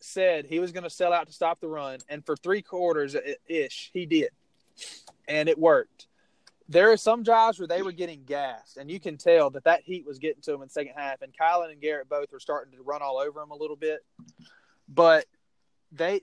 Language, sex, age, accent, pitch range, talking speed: English, male, 20-39, American, 150-195 Hz, 230 wpm